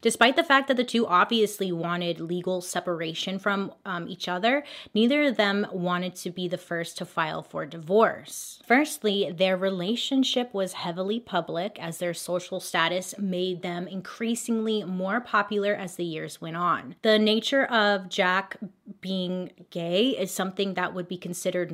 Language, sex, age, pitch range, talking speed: English, female, 20-39, 180-220 Hz, 160 wpm